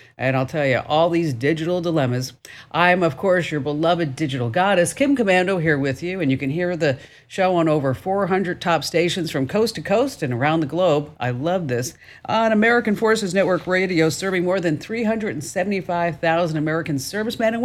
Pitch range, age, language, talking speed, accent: 140-190 Hz, 50-69, English, 185 wpm, American